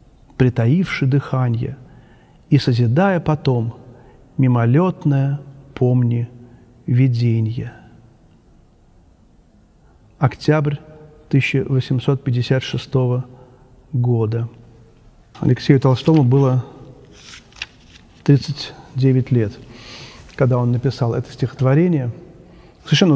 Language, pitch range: Russian, 125-160 Hz